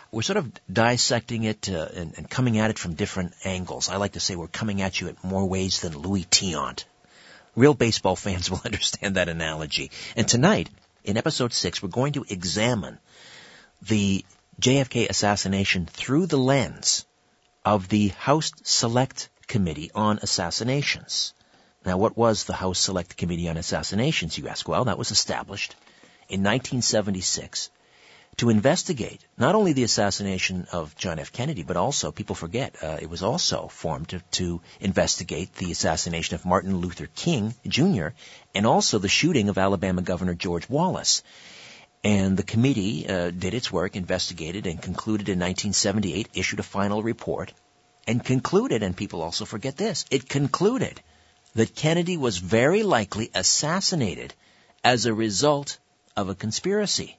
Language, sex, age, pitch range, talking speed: English, male, 50-69, 90-115 Hz, 155 wpm